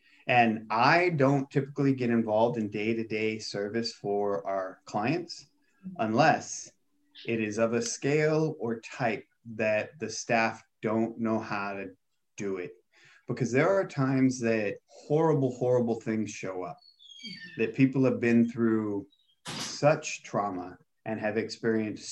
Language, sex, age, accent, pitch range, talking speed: English, male, 30-49, American, 110-135 Hz, 135 wpm